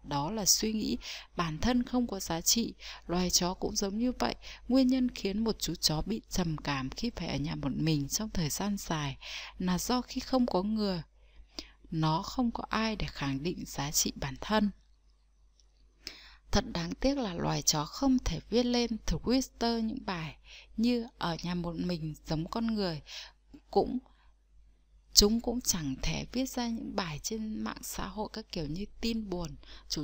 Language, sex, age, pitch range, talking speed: Vietnamese, female, 20-39, 165-230 Hz, 185 wpm